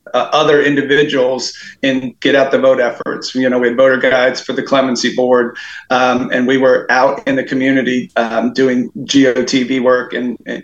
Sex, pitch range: male, 125-140 Hz